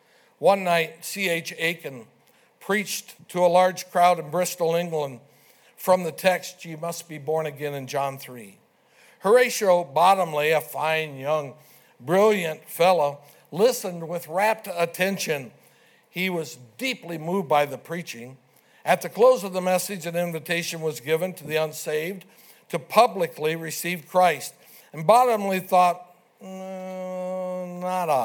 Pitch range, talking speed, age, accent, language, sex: 155-190 Hz, 130 wpm, 60-79, American, English, male